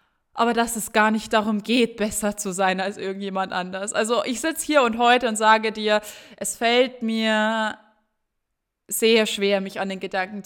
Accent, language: German, German